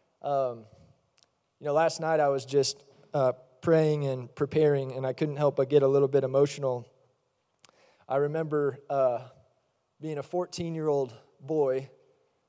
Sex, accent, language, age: male, American, English, 20-39